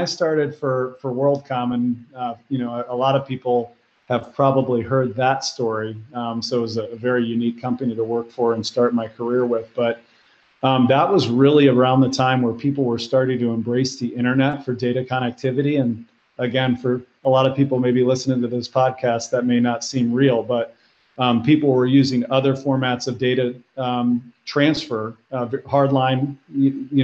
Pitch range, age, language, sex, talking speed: 120-135 Hz, 40-59, English, male, 190 wpm